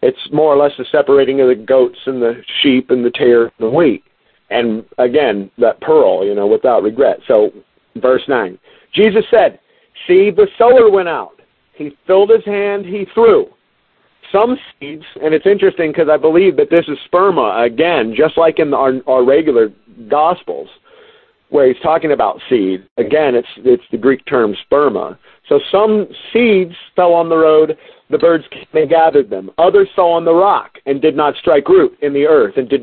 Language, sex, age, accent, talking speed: English, male, 50-69, American, 185 wpm